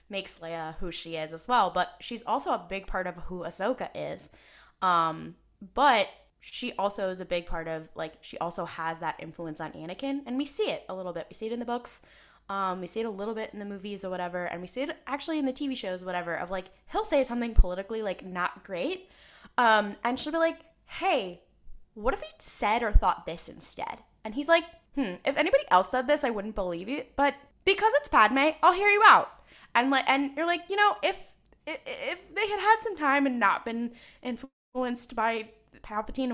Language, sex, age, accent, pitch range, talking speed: English, female, 10-29, American, 185-290 Hz, 225 wpm